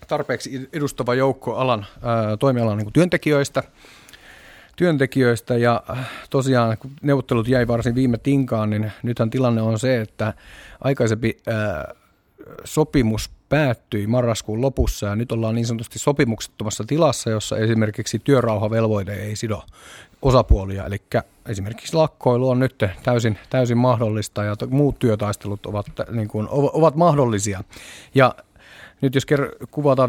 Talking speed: 125 wpm